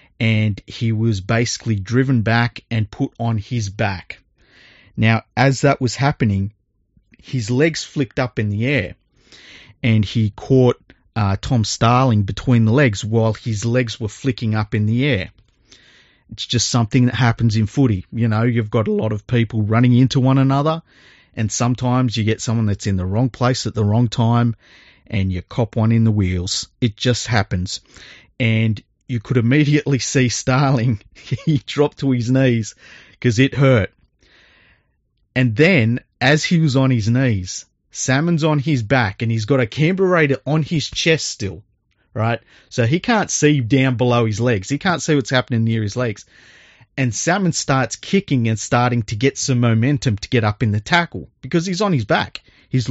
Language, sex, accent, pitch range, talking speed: English, male, Australian, 110-135 Hz, 180 wpm